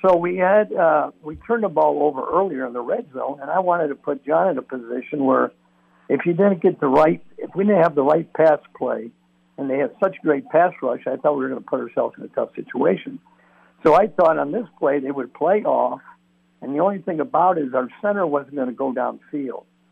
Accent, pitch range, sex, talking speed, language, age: American, 125-165 Hz, male, 245 wpm, English, 60-79